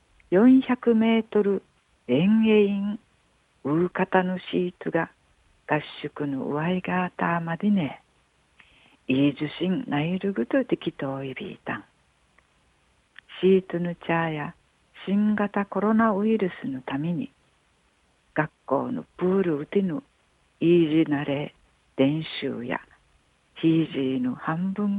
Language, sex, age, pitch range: Japanese, female, 60-79, 145-210 Hz